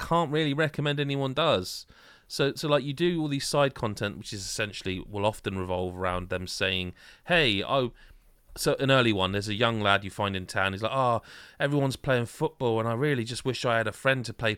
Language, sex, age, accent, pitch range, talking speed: English, male, 30-49, British, 100-145 Hz, 220 wpm